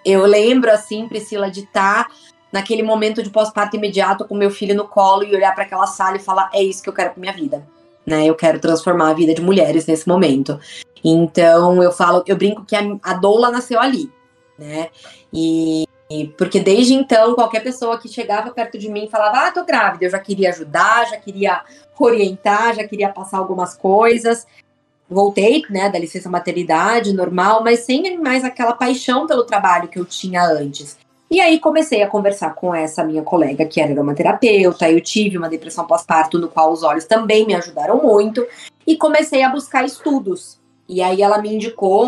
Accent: Brazilian